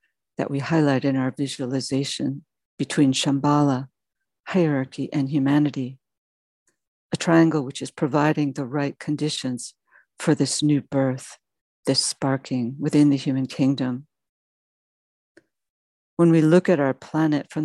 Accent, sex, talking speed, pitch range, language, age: American, female, 120 wpm, 135-155 Hz, English, 60-79